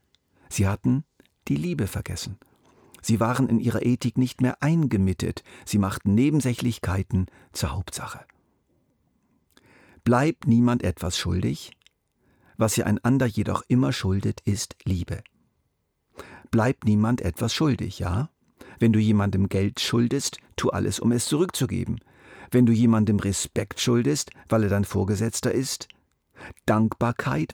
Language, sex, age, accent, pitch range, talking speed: German, male, 50-69, German, 95-120 Hz, 120 wpm